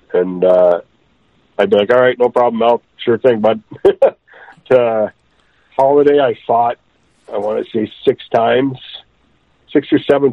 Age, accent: 50-69, American